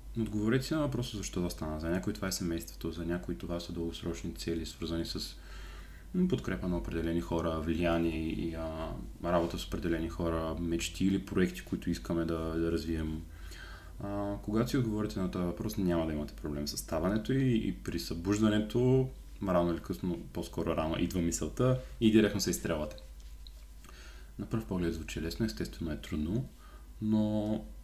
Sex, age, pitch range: male, 30-49, 85-105 Hz